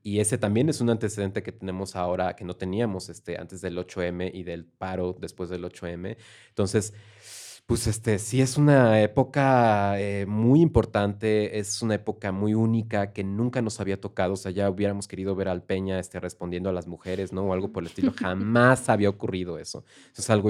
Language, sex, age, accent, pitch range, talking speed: Spanish, male, 20-39, Mexican, 95-110 Hz, 200 wpm